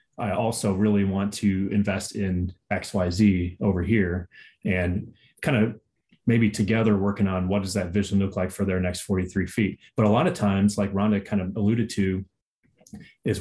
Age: 30-49